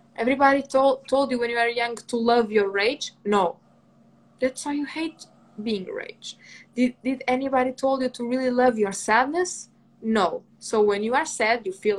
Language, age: English, 20-39